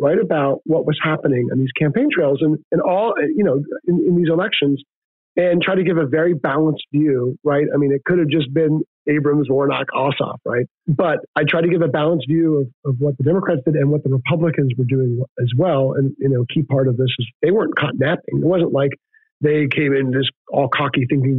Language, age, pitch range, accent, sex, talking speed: English, 40-59, 130-155 Hz, American, male, 235 wpm